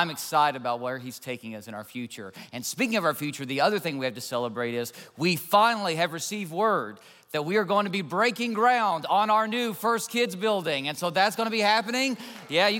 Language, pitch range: English, 165-215 Hz